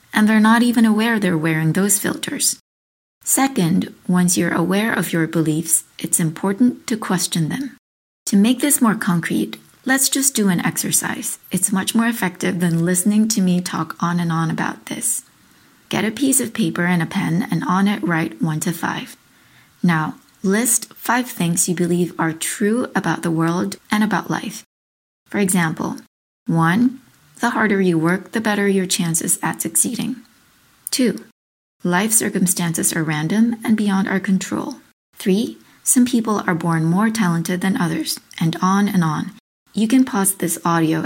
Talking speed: 165 wpm